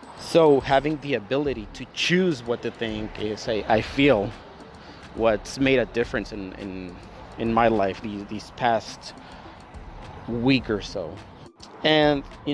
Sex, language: male, English